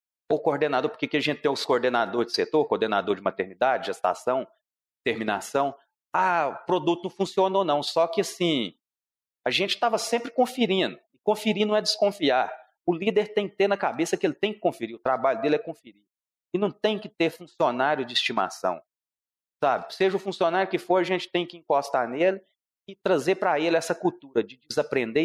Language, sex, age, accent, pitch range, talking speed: Portuguese, male, 40-59, Brazilian, 135-200 Hz, 190 wpm